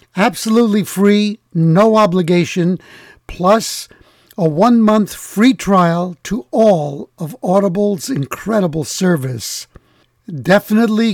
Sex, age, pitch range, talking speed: male, 60-79, 155-200 Hz, 85 wpm